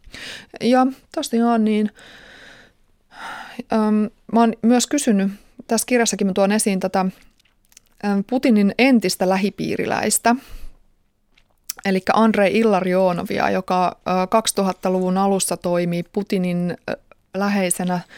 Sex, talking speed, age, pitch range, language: female, 100 wpm, 20-39, 185-225 Hz, Finnish